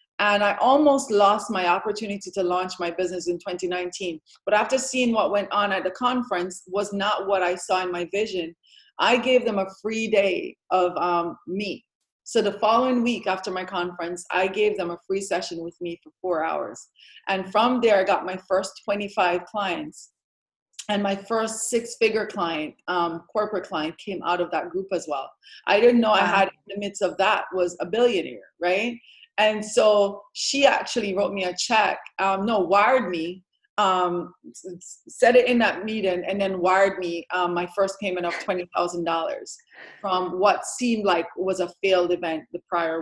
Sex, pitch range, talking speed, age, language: female, 180-220 Hz, 185 wpm, 30-49, English